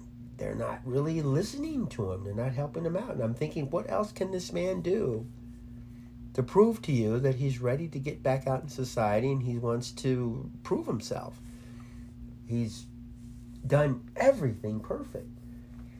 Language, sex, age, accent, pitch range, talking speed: English, male, 50-69, American, 120-145 Hz, 160 wpm